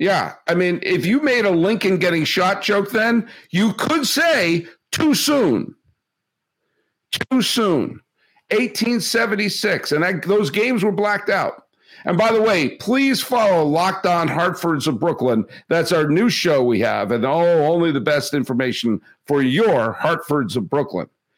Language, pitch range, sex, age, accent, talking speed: English, 145-210 Hz, male, 50-69, American, 150 wpm